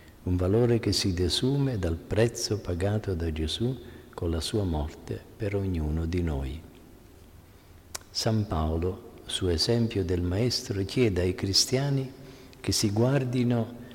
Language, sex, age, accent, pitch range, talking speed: Italian, male, 50-69, native, 90-115 Hz, 130 wpm